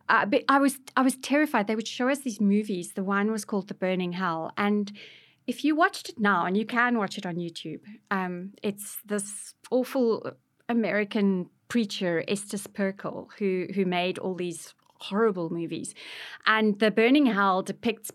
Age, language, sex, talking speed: 30-49, English, female, 175 wpm